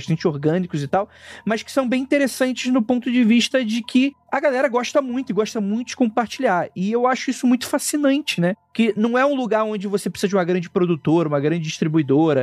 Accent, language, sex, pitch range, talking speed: Brazilian, Portuguese, male, 170-245 Hz, 220 wpm